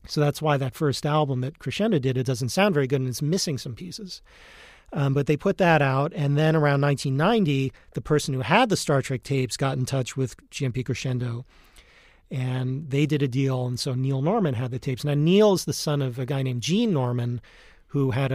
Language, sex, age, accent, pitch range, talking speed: English, male, 40-59, American, 130-150 Hz, 220 wpm